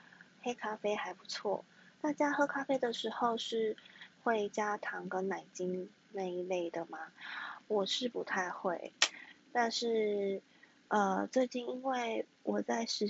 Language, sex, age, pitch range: Chinese, female, 20-39, 200-255 Hz